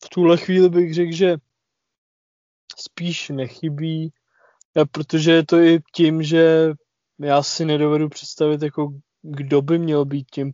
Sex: male